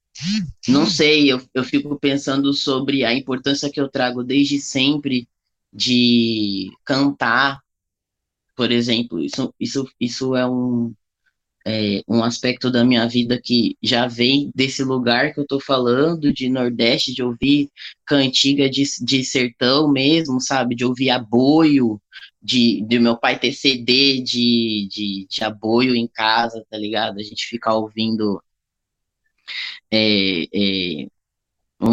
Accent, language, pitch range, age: Brazilian, Portuguese, 115-140 Hz, 10-29